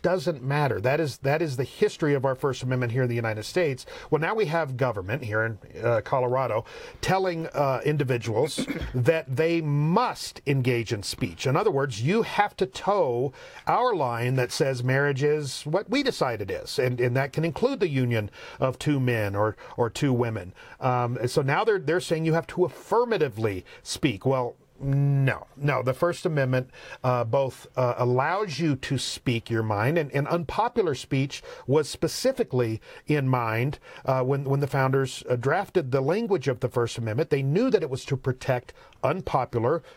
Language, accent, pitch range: English, American, 125-155 Hz